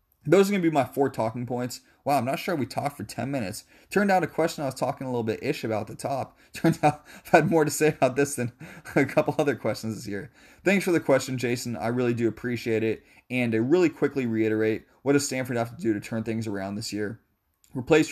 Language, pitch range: English, 110-135 Hz